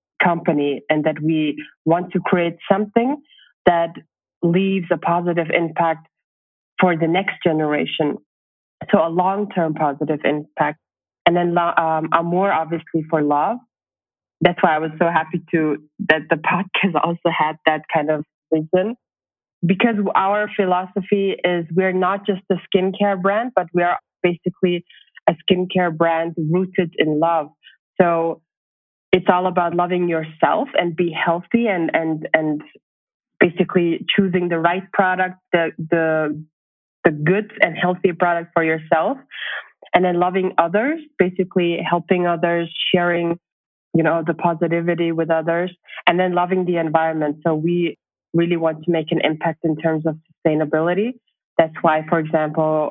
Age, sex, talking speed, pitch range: 20-39, female, 145 wpm, 160-185 Hz